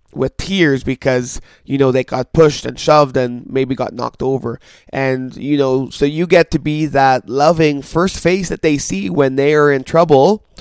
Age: 20-39